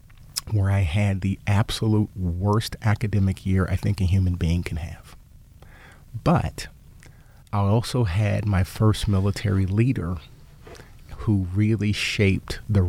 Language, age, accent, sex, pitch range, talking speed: English, 40-59, American, male, 95-110 Hz, 125 wpm